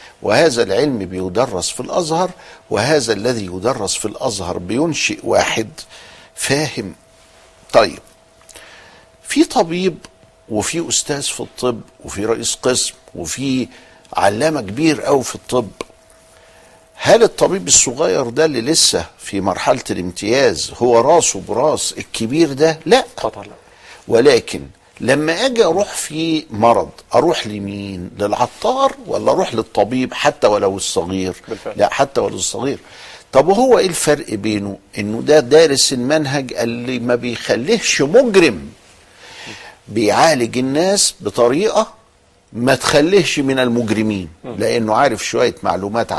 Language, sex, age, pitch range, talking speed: Arabic, male, 60-79, 105-150 Hz, 115 wpm